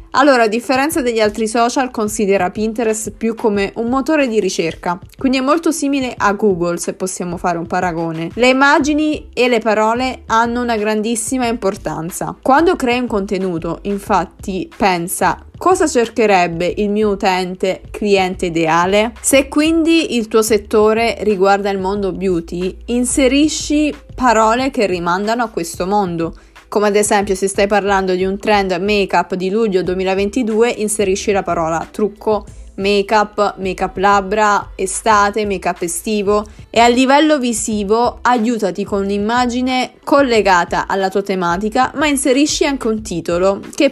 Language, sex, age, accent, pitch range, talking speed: Italian, female, 20-39, native, 190-235 Hz, 140 wpm